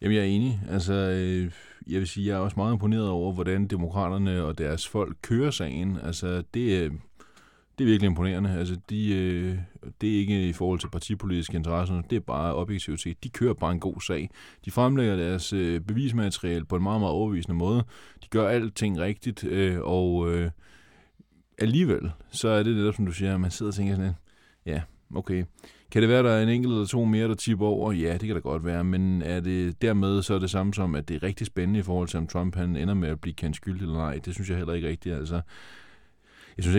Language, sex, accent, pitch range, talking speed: Danish, male, native, 85-105 Hz, 230 wpm